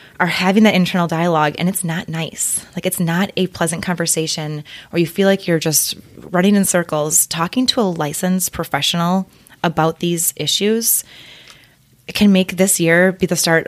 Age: 20-39